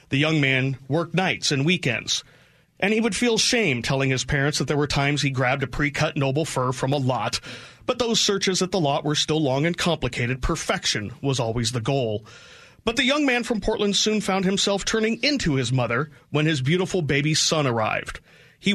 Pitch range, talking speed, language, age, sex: 130-185 Hz, 205 wpm, English, 30-49, male